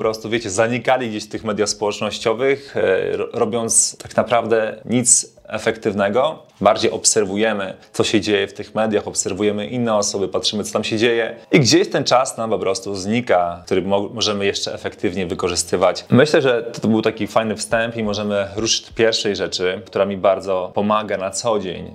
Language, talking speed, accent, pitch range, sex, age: Polish, 175 wpm, native, 105-120 Hz, male, 30-49